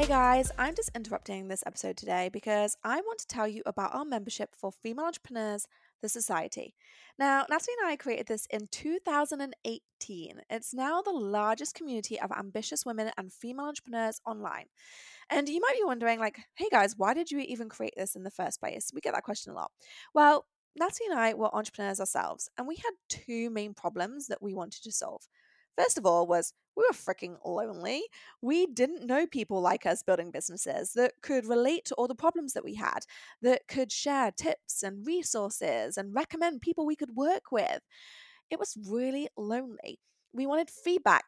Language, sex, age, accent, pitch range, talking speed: English, female, 20-39, British, 210-300 Hz, 190 wpm